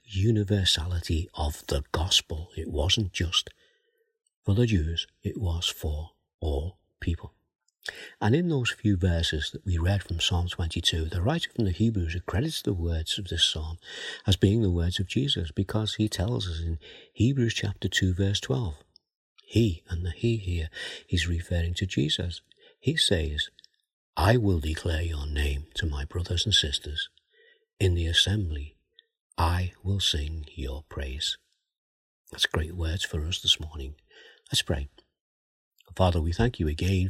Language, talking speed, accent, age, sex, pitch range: English, 155 wpm, British, 50-69, male, 80-100 Hz